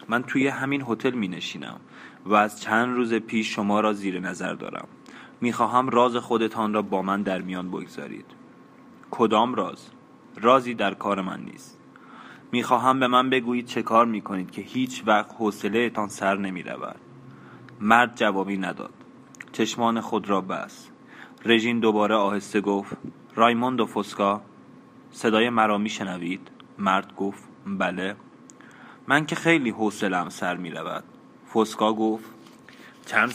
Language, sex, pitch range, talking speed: Persian, male, 100-120 Hz, 145 wpm